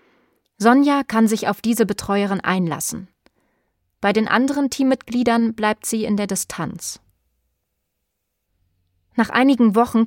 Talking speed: 115 wpm